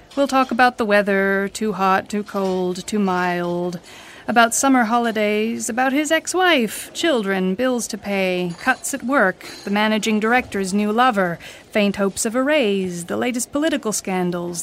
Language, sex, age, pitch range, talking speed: English, female, 30-49, 190-255 Hz, 155 wpm